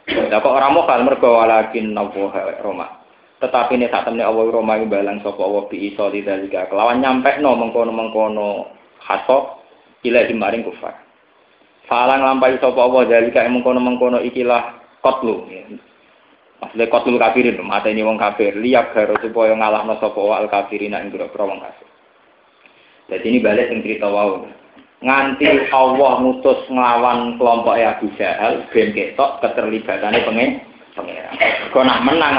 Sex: male